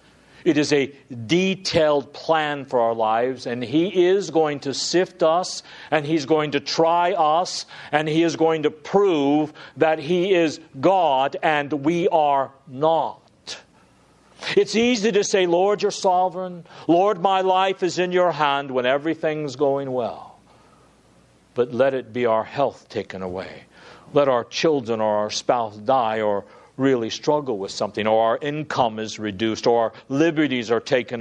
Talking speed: 160 wpm